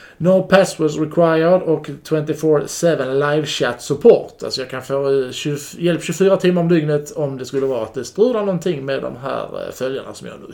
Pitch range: 135-175 Hz